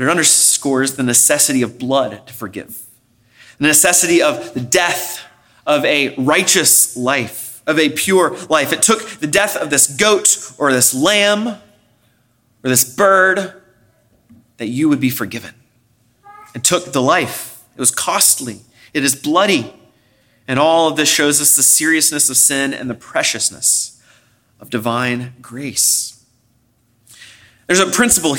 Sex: male